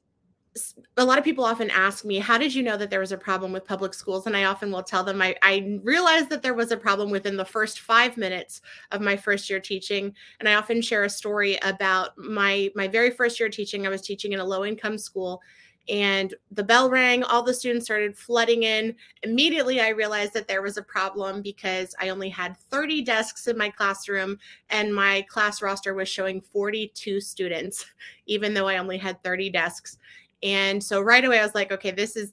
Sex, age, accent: female, 30-49, American